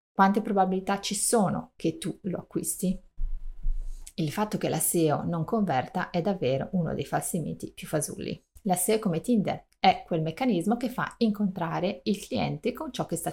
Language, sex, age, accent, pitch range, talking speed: Italian, female, 30-49, native, 165-205 Hz, 175 wpm